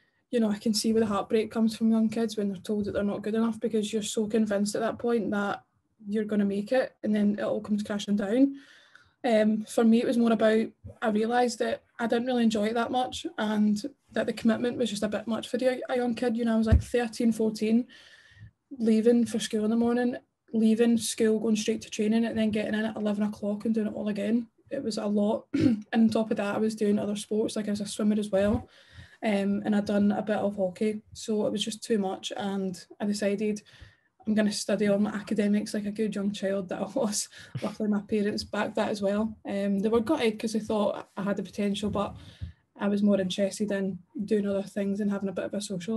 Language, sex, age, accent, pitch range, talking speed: English, female, 10-29, British, 205-230 Hz, 245 wpm